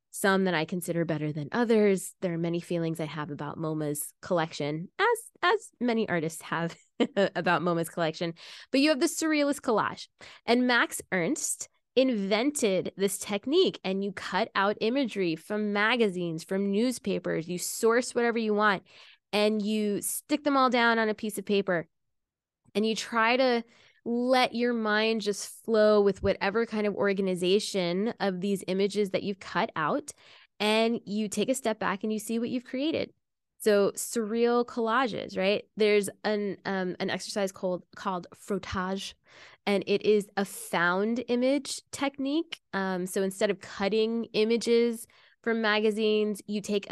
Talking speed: 155 wpm